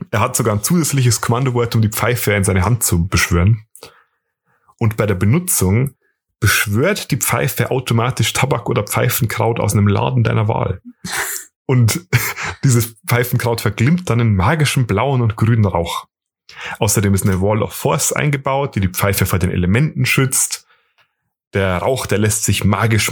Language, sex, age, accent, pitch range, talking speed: German, male, 30-49, German, 110-130 Hz, 160 wpm